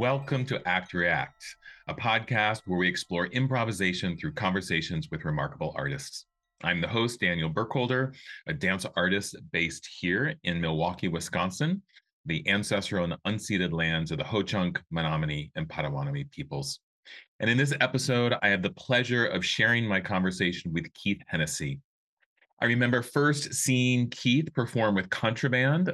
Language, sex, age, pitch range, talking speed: English, male, 30-49, 95-125 Hz, 145 wpm